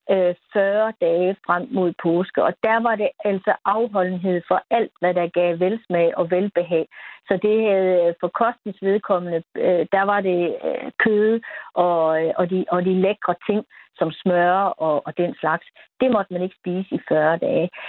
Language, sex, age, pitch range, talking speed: Danish, female, 60-79, 175-205 Hz, 165 wpm